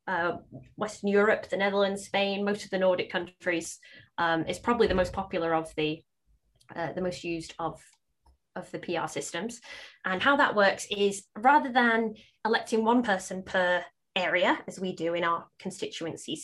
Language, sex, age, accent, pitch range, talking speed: English, female, 20-39, British, 175-215 Hz, 170 wpm